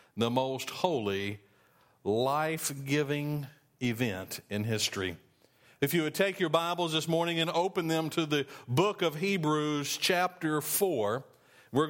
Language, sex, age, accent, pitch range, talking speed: English, male, 50-69, American, 130-170 Hz, 130 wpm